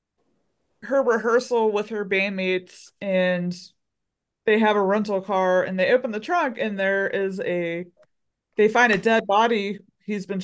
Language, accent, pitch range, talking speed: English, American, 185-215 Hz, 155 wpm